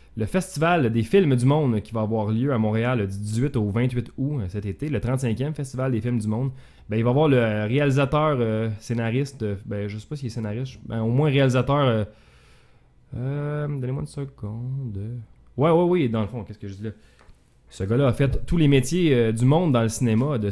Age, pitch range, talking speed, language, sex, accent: 20-39, 100-130 Hz, 220 wpm, English, male, Canadian